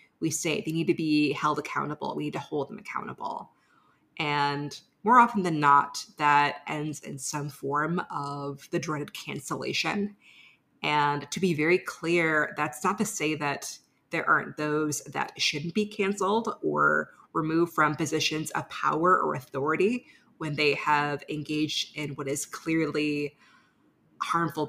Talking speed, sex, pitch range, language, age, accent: 150 wpm, female, 145-170 Hz, English, 30-49, American